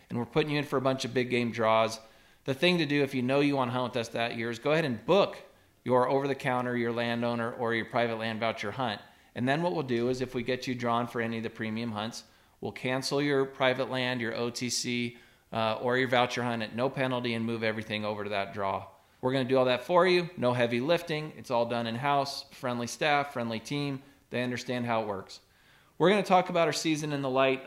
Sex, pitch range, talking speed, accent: male, 115-135 Hz, 250 wpm, American